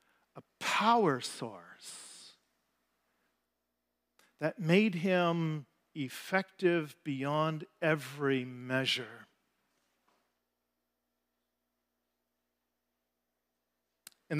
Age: 40-59